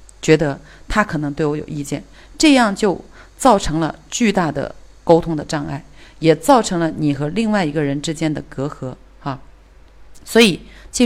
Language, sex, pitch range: Chinese, female, 150-190 Hz